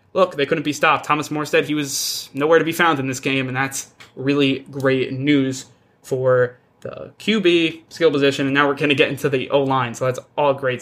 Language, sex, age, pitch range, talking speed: English, male, 20-39, 135-160 Hz, 215 wpm